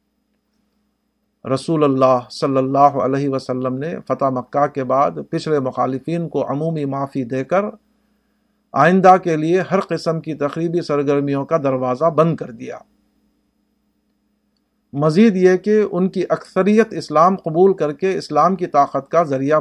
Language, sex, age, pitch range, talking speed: Urdu, male, 50-69, 135-180 Hz, 140 wpm